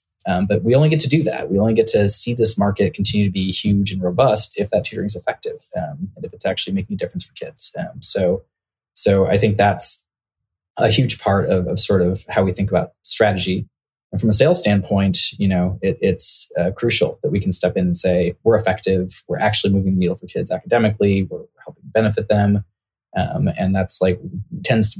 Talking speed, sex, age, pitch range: 225 wpm, male, 20-39, 95-110 Hz